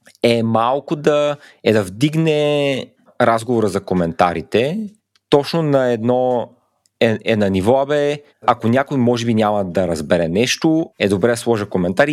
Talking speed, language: 150 wpm, Bulgarian